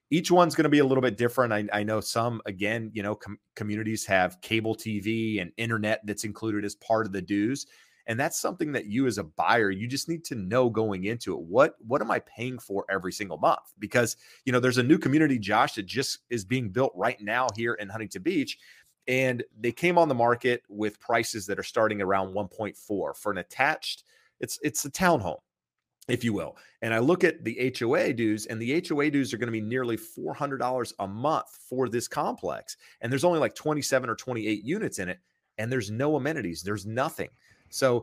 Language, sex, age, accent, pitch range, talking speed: English, male, 30-49, American, 105-130 Hz, 220 wpm